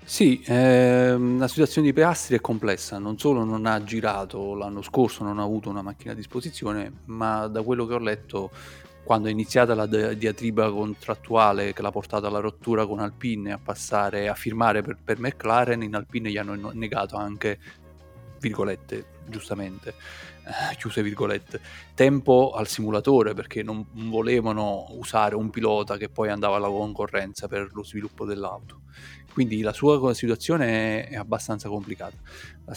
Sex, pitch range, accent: male, 105-120 Hz, native